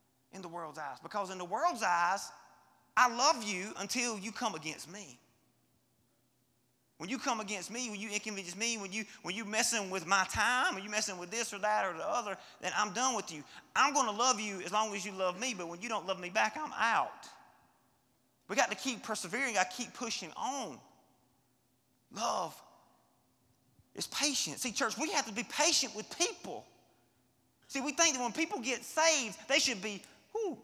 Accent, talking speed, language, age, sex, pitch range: American, 200 wpm, English, 30-49, male, 180-250 Hz